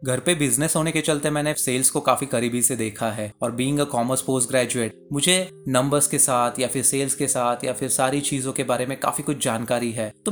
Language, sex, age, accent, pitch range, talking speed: Hindi, male, 20-39, native, 120-155 Hz, 240 wpm